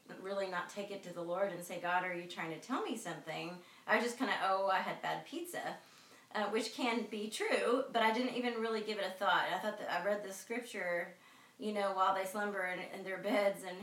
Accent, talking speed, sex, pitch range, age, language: American, 245 wpm, female, 175-210 Hz, 30-49, English